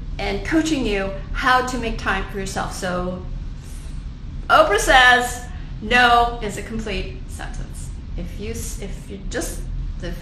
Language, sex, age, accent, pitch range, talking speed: English, female, 40-59, American, 205-285 Hz, 135 wpm